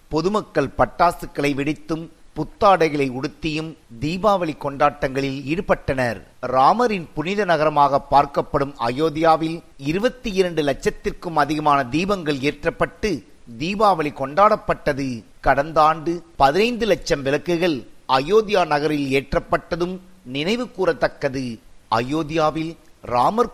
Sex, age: male, 50-69